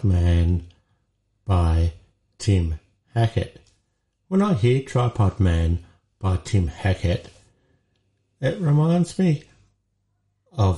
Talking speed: 90 wpm